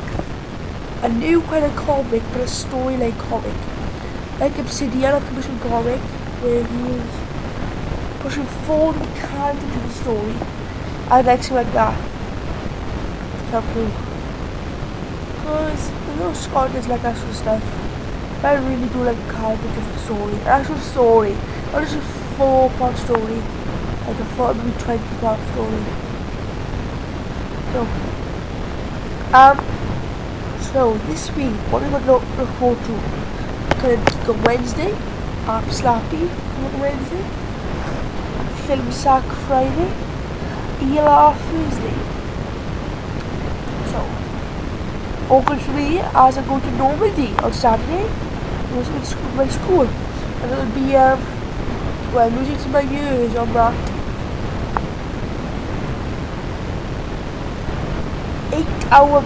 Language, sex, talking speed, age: English, female, 125 wpm, 20-39